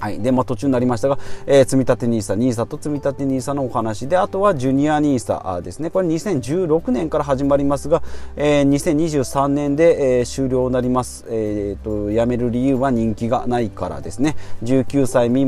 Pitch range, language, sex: 115-160 Hz, Japanese, male